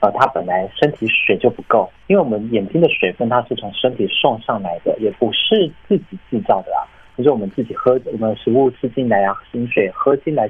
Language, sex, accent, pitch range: Chinese, male, native, 105-135 Hz